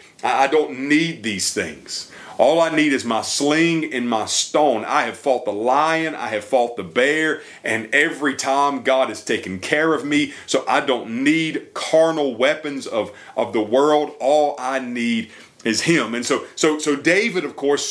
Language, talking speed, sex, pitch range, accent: English, 185 wpm, male, 120-160 Hz, American